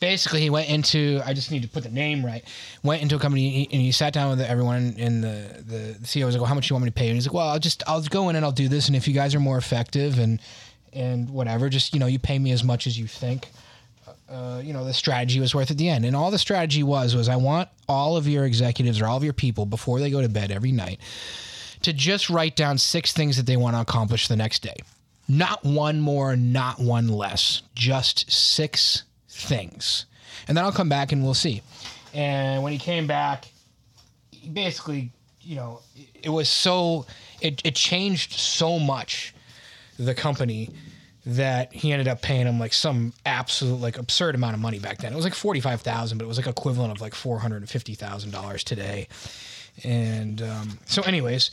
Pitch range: 120-145 Hz